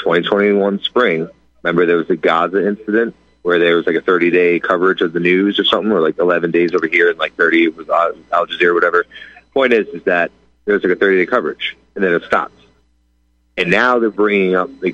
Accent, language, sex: American, English, male